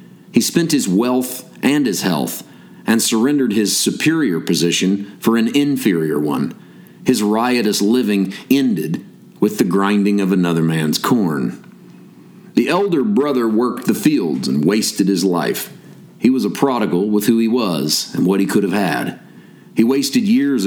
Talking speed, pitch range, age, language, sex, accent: 155 wpm, 100-125 Hz, 40-59, English, male, American